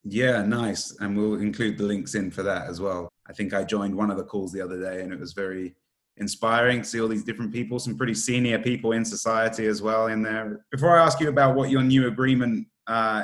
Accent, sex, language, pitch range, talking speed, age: British, male, English, 105-125 Hz, 245 wpm, 30-49